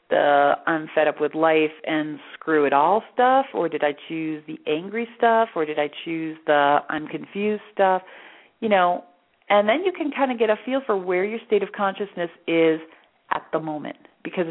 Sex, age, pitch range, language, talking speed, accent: female, 40-59, 155-205 Hz, English, 200 wpm, American